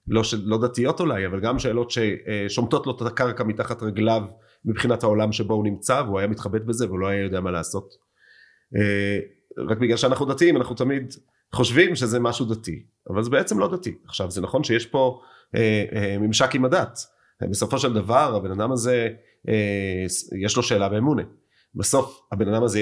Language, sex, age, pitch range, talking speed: Hebrew, male, 30-49, 105-125 Hz, 170 wpm